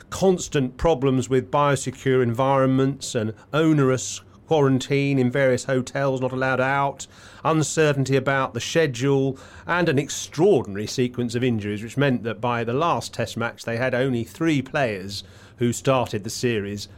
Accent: British